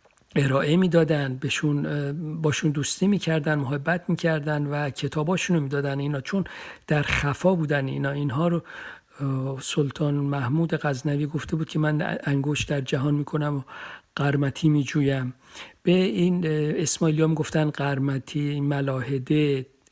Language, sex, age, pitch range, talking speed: Persian, male, 50-69, 145-170 Hz, 120 wpm